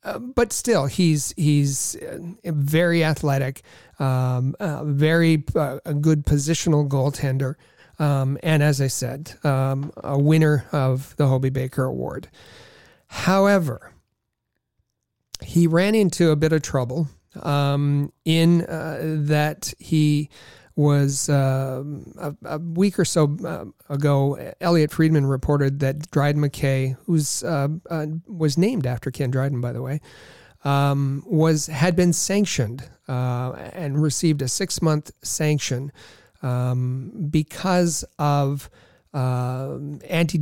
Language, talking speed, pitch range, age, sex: English, 125 wpm, 135-160 Hz, 40-59, male